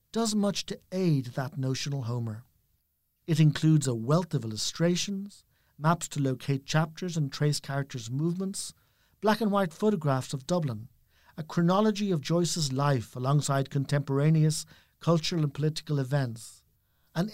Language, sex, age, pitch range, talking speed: English, male, 50-69, 135-175 Hz, 130 wpm